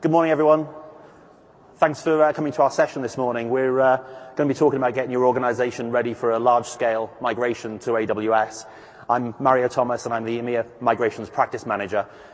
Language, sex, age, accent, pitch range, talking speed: English, male, 30-49, British, 110-130 Hz, 190 wpm